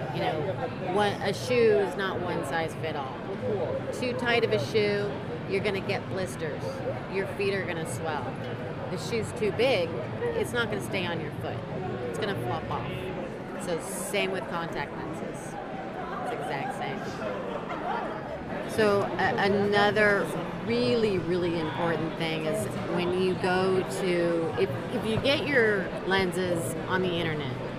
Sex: female